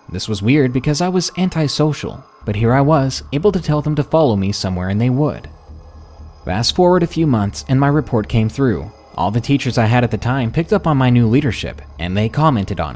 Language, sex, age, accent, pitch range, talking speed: English, male, 20-39, American, 100-140 Hz, 230 wpm